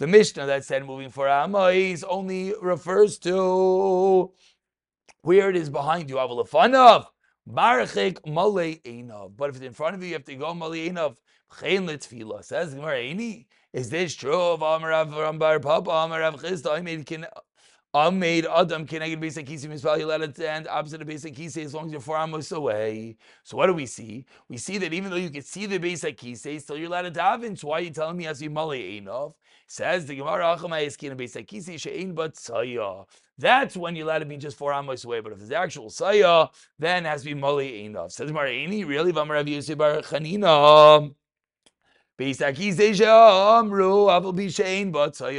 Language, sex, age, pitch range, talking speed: English, male, 30-49, 150-185 Hz, 200 wpm